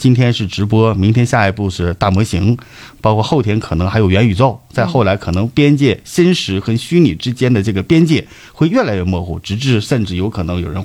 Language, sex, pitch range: Chinese, male, 100-140 Hz